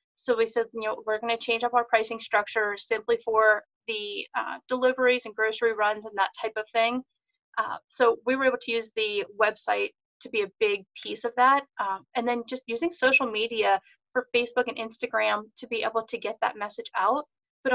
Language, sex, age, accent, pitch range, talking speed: English, female, 30-49, American, 220-255 Hz, 210 wpm